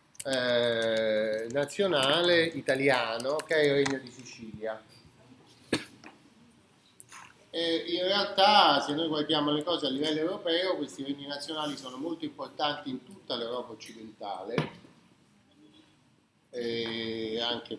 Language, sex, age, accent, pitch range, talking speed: Italian, male, 30-49, native, 115-155 Hz, 110 wpm